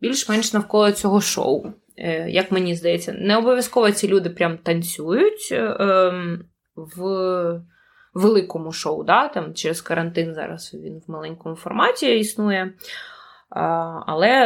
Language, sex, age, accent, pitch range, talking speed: Ukrainian, female, 20-39, native, 170-210 Hz, 110 wpm